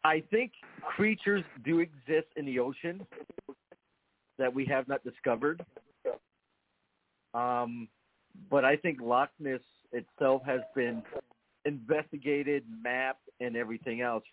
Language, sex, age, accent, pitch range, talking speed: English, male, 50-69, American, 125-160 Hz, 115 wpm